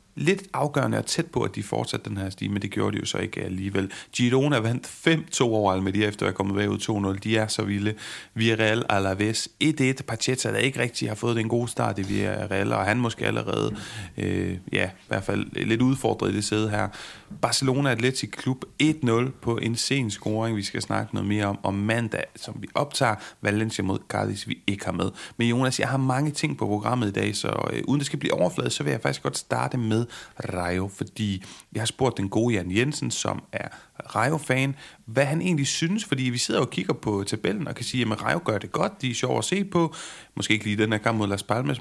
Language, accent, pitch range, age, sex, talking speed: Danish, native, 105-130 Hz, 30-49, male, 230 wpm